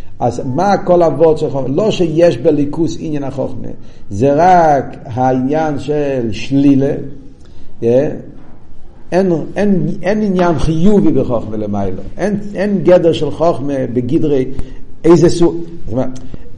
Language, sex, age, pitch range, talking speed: Hebrew, male, 50-69, 135-175 Hz, 110 wpm